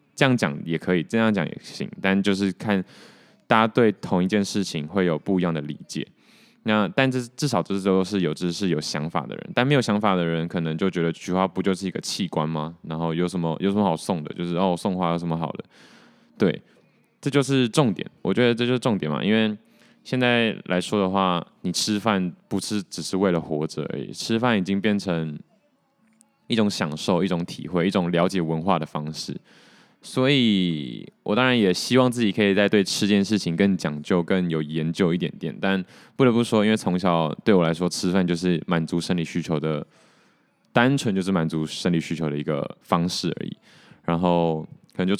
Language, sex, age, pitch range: Chinese, male, 20-39, 85-105 Hz